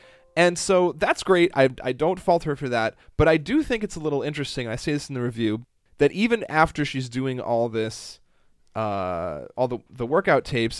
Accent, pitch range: American, 110-145 Hz